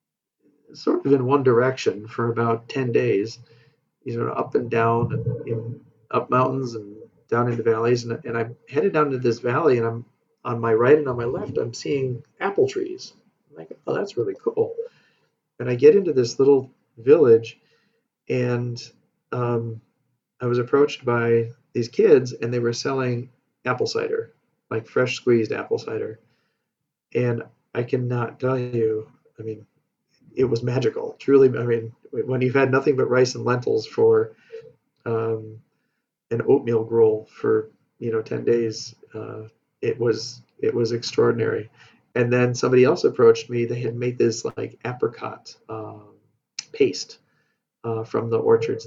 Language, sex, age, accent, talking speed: English, male, 40-59, American, 160 wpm